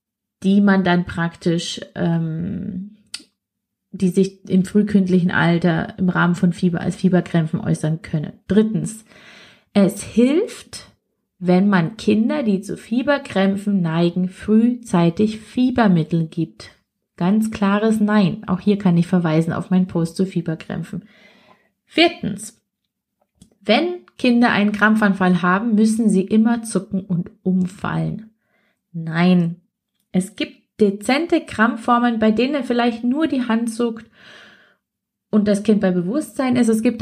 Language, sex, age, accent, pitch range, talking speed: German, female, 30-49, German, 180-225 Hz, 125 wpm